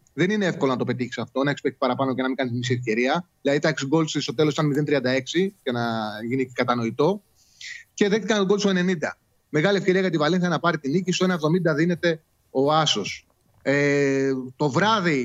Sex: male